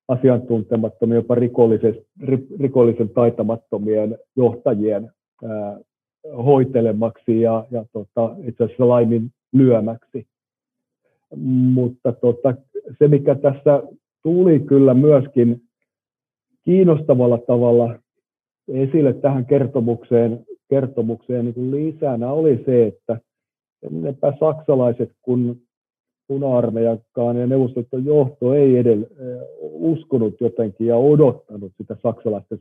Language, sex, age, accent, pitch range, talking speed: Finnish, male, 50-69, native, 115-135 Hz, 90 wpm